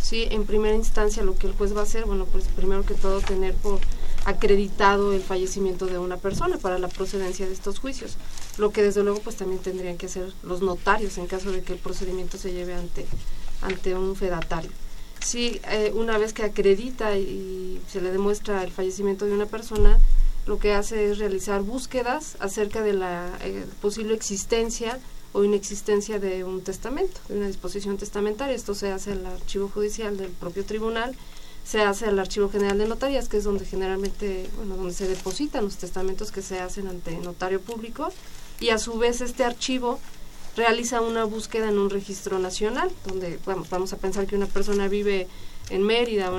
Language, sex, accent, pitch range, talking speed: Spanish, female, Mexican, 190-215 Hz, 190 wpm